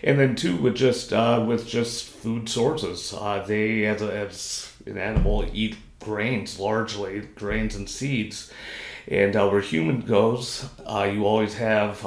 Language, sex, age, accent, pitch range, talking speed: English, male, 30-49, American, 100-110 Hz, 160 wpm